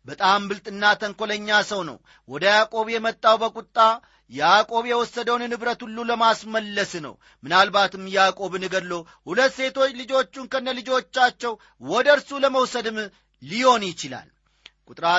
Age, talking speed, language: 40-59, 115 wpm, Amharic